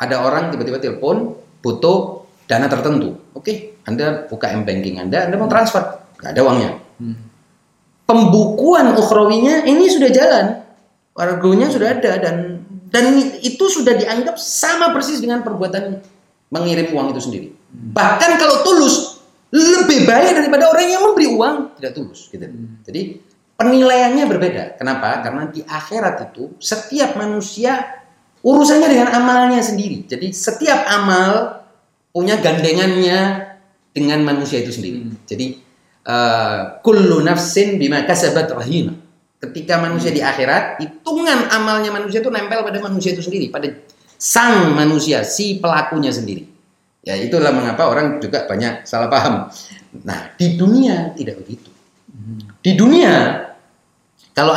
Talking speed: 130 wpm